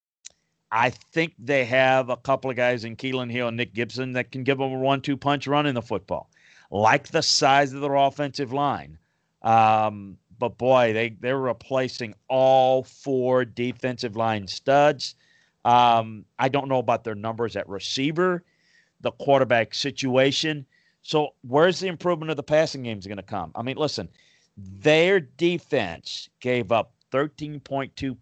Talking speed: 155 wpm